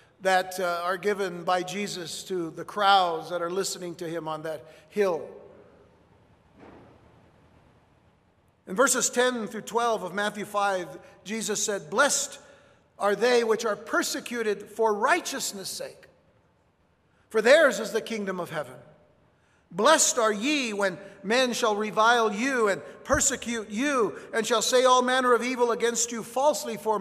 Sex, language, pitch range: male, English, 190-235 Hz